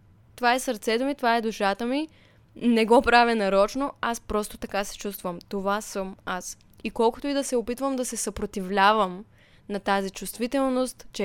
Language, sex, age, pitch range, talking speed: Bulgarian, female, 10-29, 200-245 Hz, 175 wpm